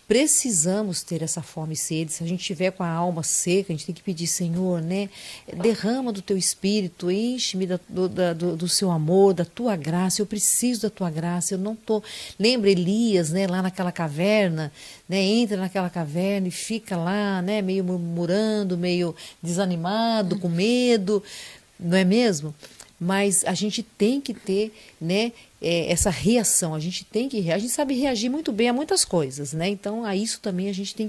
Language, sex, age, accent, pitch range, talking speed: Portuguese, female, 50-69, Brazilian, 170-210 Hz, 185 wpm